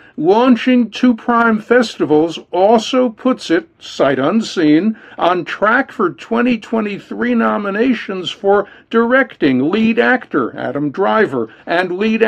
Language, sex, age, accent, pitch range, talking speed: English, male, 60-79, American, 175-240 Hz, 110 wpm